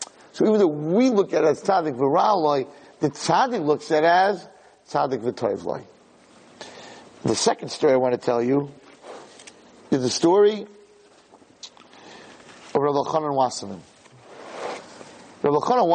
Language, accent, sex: English, American, male